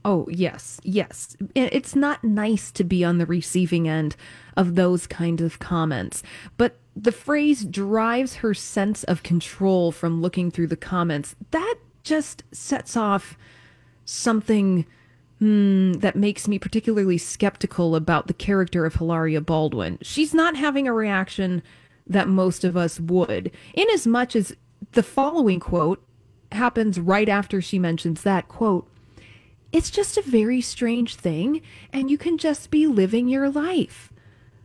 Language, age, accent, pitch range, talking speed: English, 30-49, American, 170-245 Hz, 145 wpm